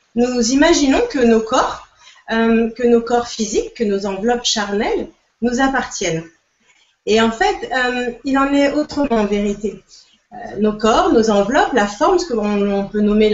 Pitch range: 210-270 Hz